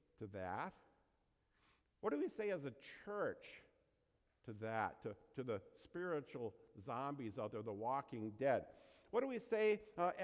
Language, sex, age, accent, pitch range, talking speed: English, male, 50-69, American, 140-210 Hz, 150 wpm